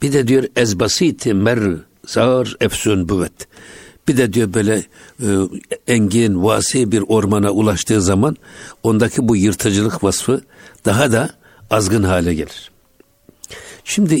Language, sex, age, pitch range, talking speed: Turkish, male, 60-79, 100-120 Hz, 120 wpm